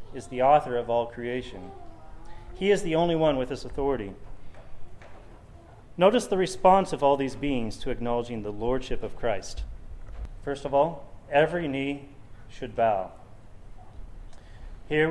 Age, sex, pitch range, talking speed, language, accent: 30-49, male, 110-160 Hz, 140 wpm, English, American